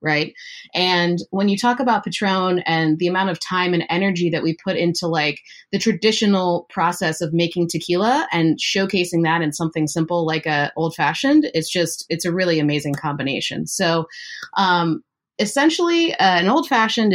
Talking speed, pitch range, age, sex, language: 170 wpm, 160-195 Hz, 30-49, female, English